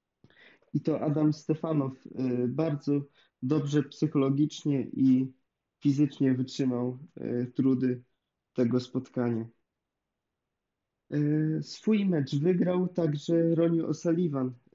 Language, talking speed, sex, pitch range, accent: Polish, 75 wpm, male, 135-155 Hz, native